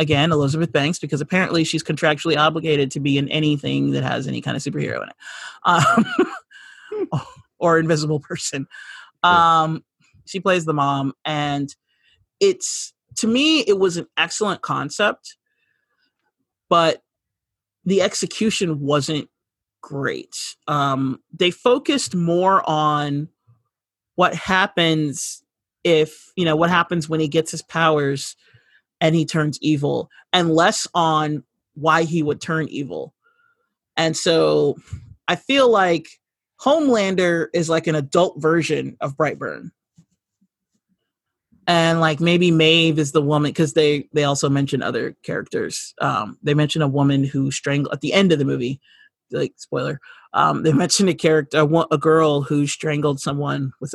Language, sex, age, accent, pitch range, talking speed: English, male, 30-49, American, 150-180 Hz, 140 wpm